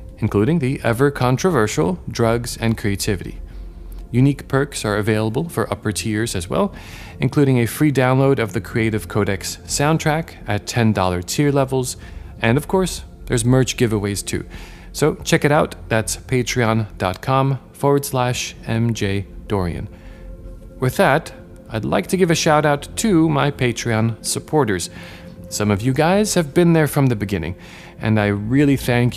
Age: 40-59